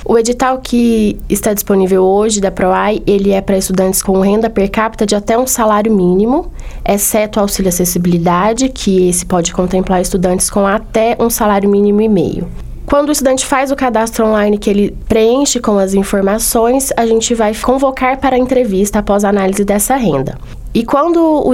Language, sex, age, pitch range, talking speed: Portuguese, female, 20-39, 195-235 Hz, 180 wpm